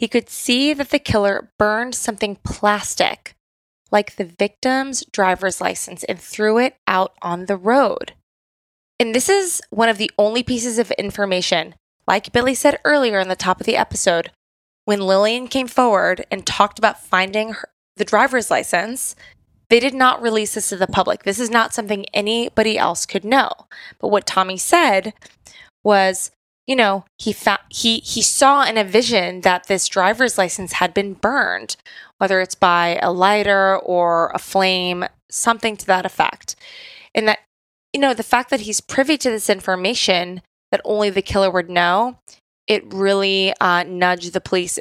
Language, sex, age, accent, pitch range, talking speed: English, female, 20-39, American, 190-245 Hz, 170 wpm